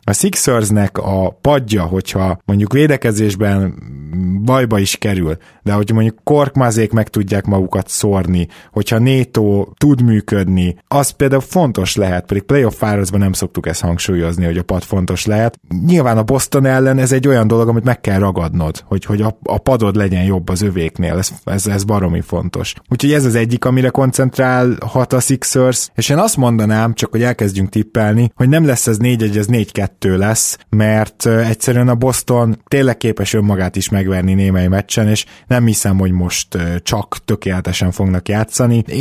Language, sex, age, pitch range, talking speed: Hungarian, male, 20-39, 95-120 Hz, 170 wpm